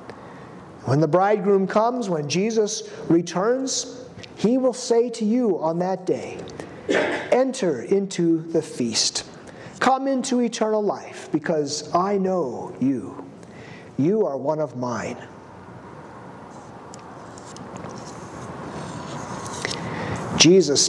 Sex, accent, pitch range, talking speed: male, American, 165-215 Hz, 95 wpm